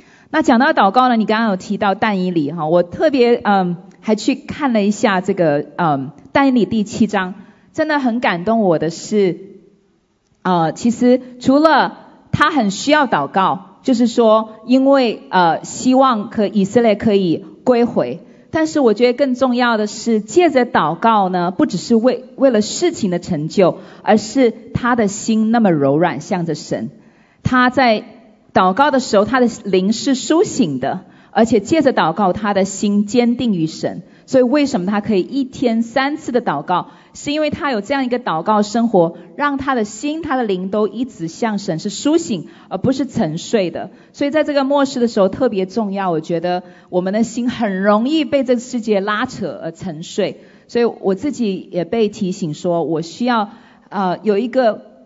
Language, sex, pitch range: English, female, 190-255 Hz